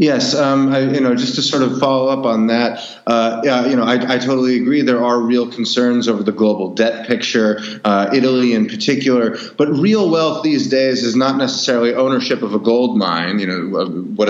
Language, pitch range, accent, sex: English, 105-125 Hz, American, male